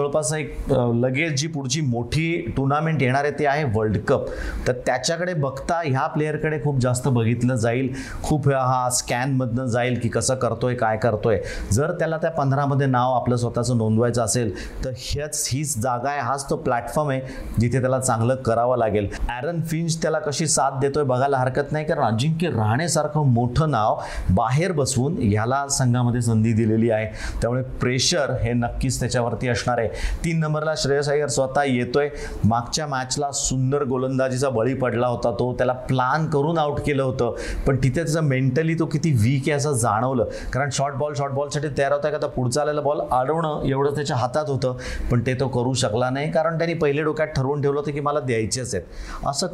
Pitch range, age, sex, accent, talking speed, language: 120-145 Hz, 40-59, male, native, 140 wpm, Marathi